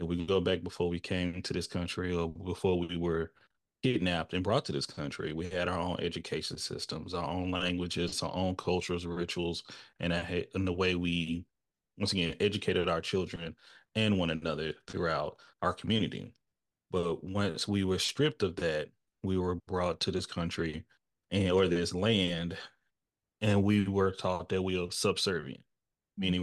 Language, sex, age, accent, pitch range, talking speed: English, male, 30-49, American, 90-105 Hz, 170 wpm